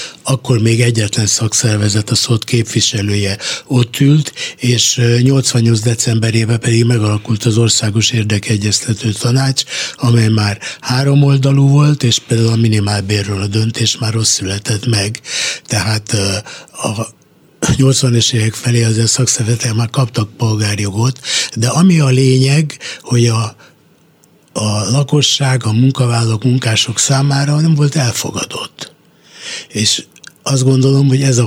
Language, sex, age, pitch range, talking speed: Hungarian, male, 60-79, 115-135 Hz, 125 wpm